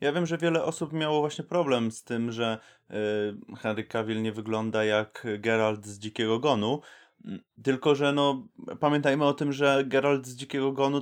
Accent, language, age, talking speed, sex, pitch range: native, Polish, 20-39, 170 wpm, male, 110-140 Hz